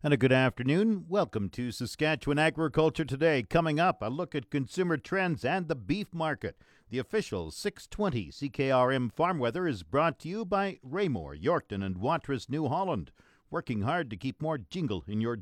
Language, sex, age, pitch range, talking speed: English, male, 50-69, 115-160 Hz, 175 wpm